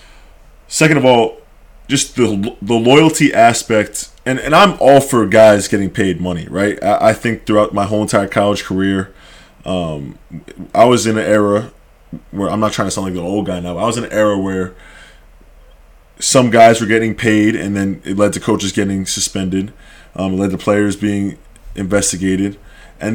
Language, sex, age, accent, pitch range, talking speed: English, male, 20-39, American, 95-115 Hz, 185 wpm